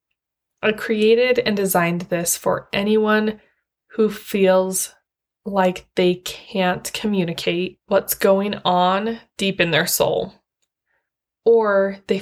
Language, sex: English, female